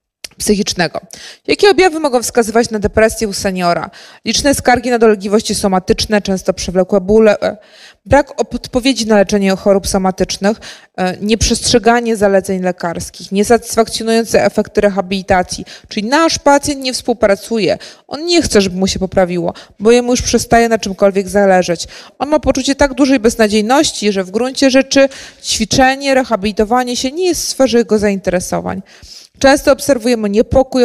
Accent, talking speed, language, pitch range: native, 135 wpm, Polish, 205-250 Hz